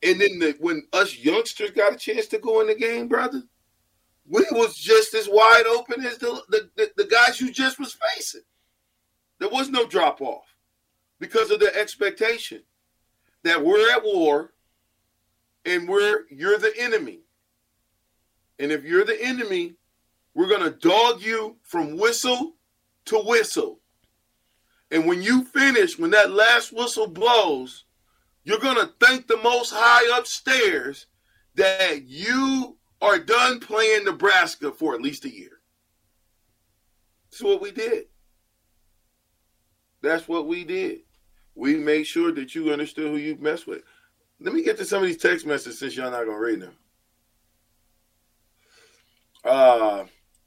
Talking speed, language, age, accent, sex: 145 wpm, English, 40-59, American, male